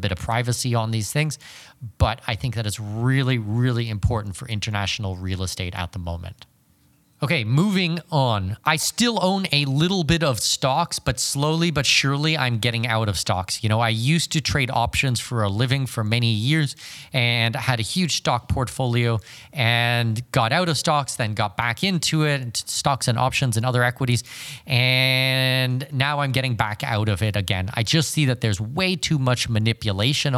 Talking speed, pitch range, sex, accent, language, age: 190 wpm, 110-135 Hz, male, American, English, 30-49